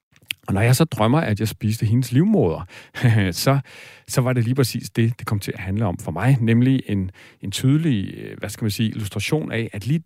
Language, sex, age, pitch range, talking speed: Danish, male, 40-59, 100-130 Hz, 220 wpm